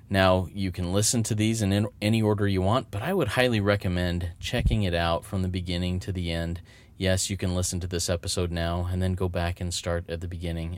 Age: 30-49